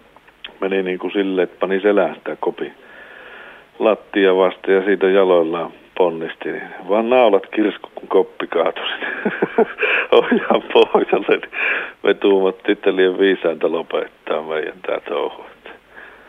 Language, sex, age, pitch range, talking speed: Finnish, male, 50-69, 95-115 Hz, 120 wpm